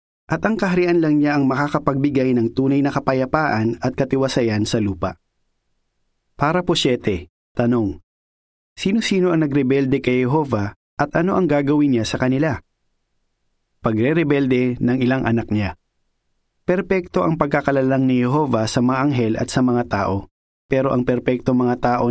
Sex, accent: male, native